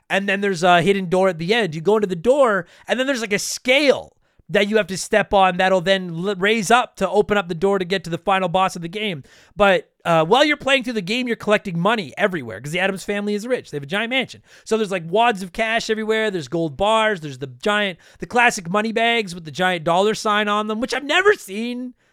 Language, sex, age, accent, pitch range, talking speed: English, male, 30-49, American, 200-290 Hz, 260 wpm